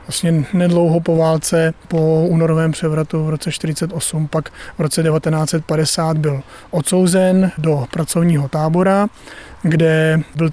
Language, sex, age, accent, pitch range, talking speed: Czech, male, 30-49, native, 155-170 Hz, 115 wpm